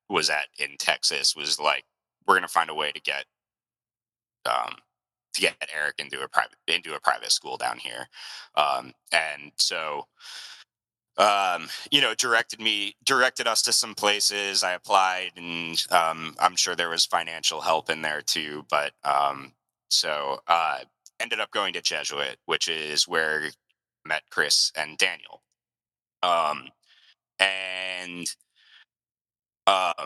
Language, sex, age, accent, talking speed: English, male, 30-49, American, 145 wpm